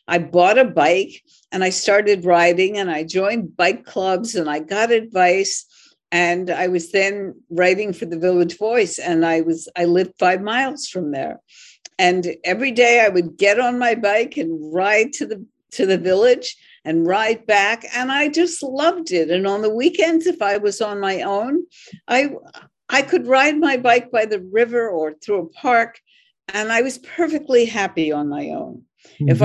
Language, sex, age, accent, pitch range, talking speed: English, female, 60-79, American, 180-255 Hz, 185 wpm